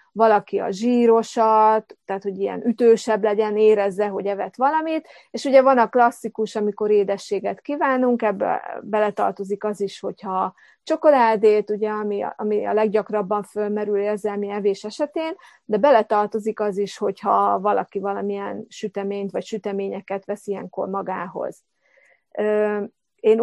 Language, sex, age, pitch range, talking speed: Hungarian, female, 30-49, 205-235 Hz, 125 wpm